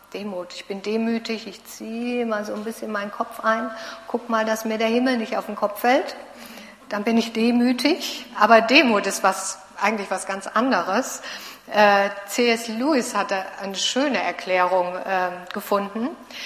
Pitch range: 190-230 Hz